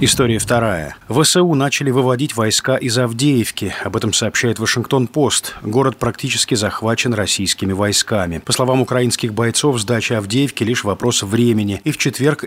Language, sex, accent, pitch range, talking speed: Russian, male, native, 100-125 Hz, 145 wpm